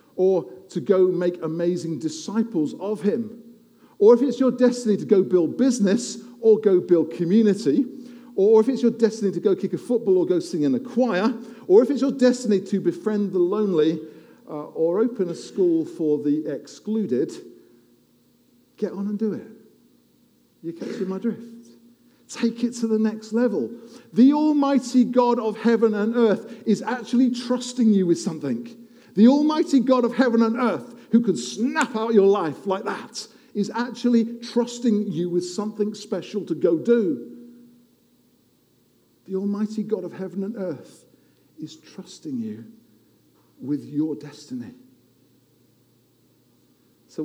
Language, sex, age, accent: English, male, 50-69, British